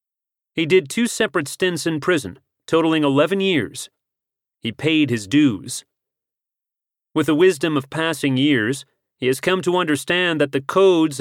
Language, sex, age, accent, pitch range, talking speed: English, male, 40-59, American, 130-170 Hz, 150 wpm